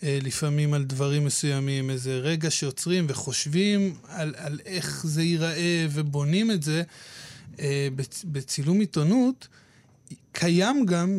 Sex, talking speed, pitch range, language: male, 125 wpm, 145-185 Hz, Hebrew